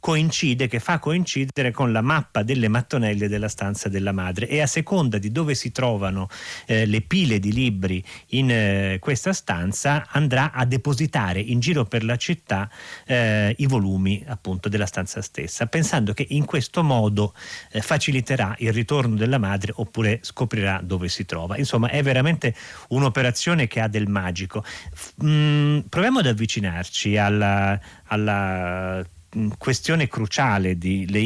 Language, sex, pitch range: Italian, male, 105-140 Hz